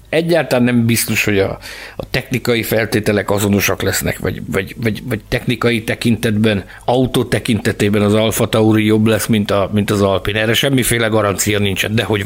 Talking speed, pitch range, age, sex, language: 165 wpm, 105-130 Hz, 60-79, male, Hungarian